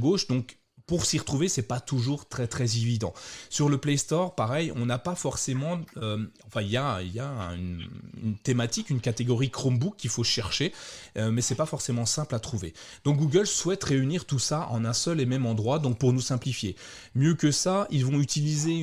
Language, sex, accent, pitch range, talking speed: French, male, French, 115-150 Hz, 210 wpm